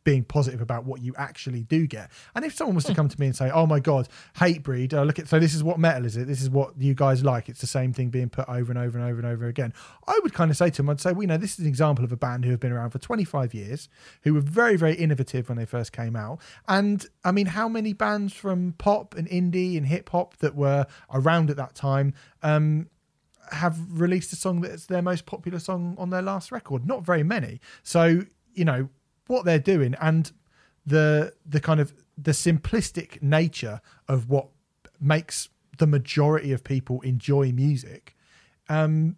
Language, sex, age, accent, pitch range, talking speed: English, male, 30-49, British, 130-170 Hz, 225 wpm